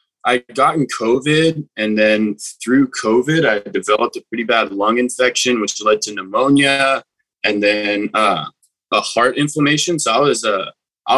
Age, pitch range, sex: 20-39, 110-135 Hz, male